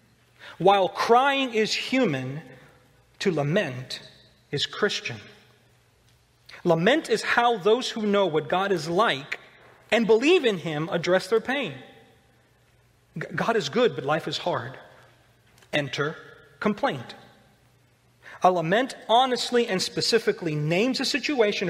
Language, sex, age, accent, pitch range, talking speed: English, male, 40-59, American, 130-205 Hz, 115 wpm